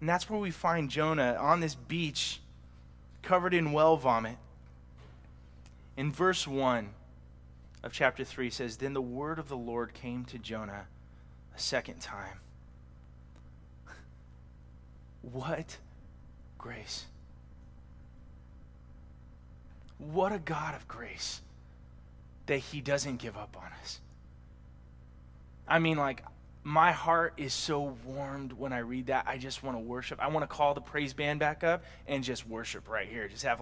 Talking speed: 140 wpm